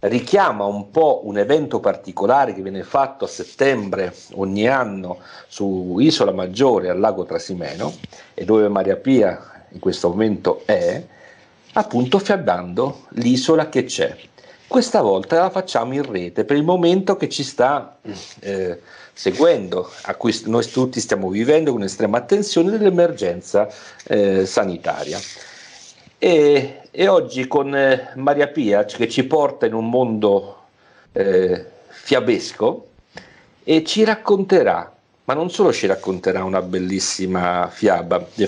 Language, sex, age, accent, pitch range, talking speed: Italian, male, 50-69, native, 100-150 Hz, 135 wpm